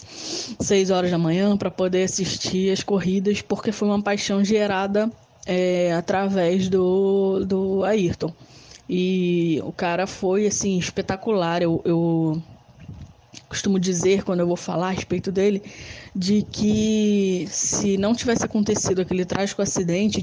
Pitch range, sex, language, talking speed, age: 170-200 Hz, female, Portuguese, 135 wpm, 10-29